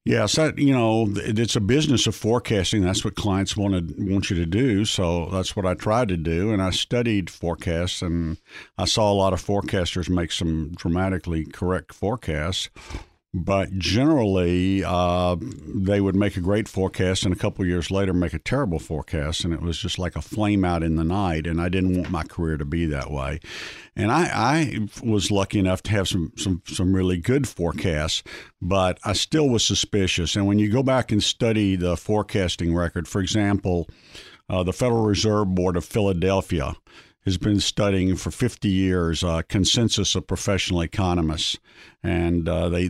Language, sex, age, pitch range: English, male, 50-69, 85-105 Hz